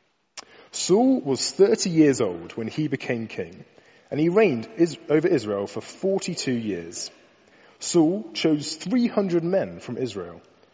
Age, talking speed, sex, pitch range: 30-49, 130 wpm, male, 115-165 Hz